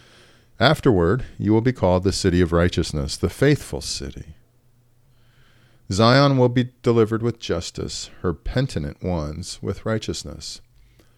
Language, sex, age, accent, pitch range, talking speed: English, male, 40-59, American, 85-120 Hz, 125 wpm